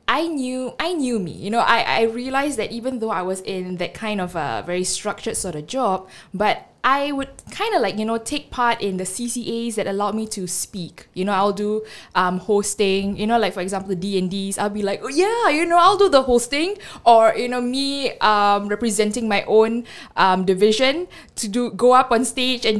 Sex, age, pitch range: female, 10-29, 195-245 Hz